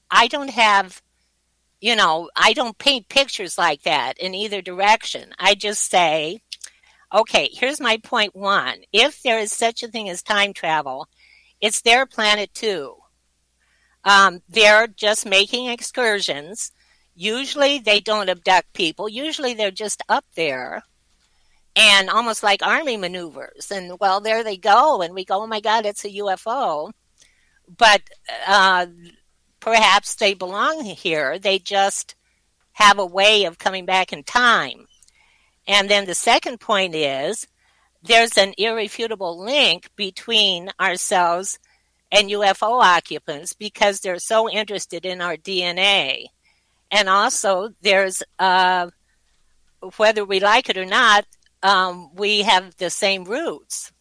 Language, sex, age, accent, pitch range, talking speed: English, female, 50-69, American, 180-220 Hz, 135 wpm